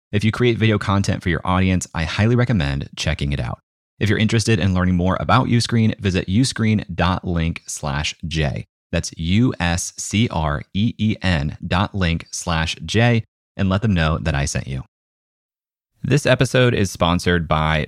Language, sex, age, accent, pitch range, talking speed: English, male, 30-49, American, 80-110 Hz, 145 wpm